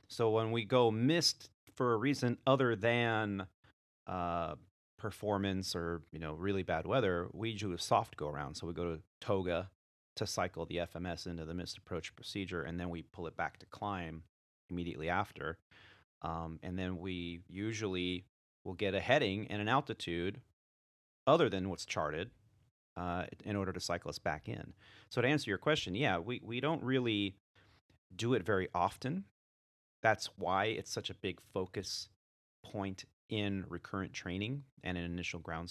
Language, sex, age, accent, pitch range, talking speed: English, male, 30-49, American, 85-110 Hz, 170 wpm